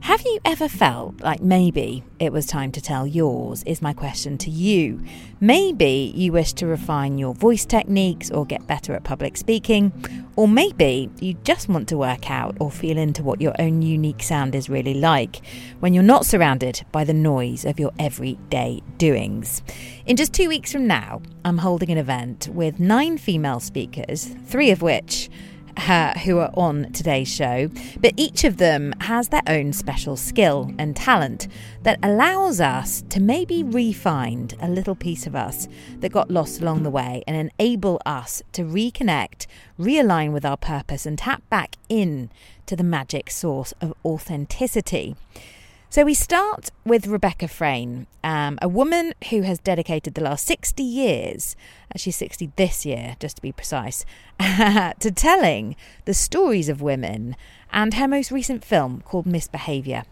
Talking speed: 170 wpm